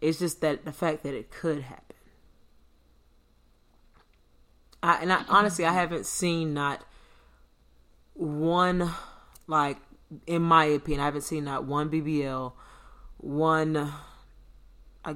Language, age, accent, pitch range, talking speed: English, 30-49, American, 140-160 Hz, 110 wpm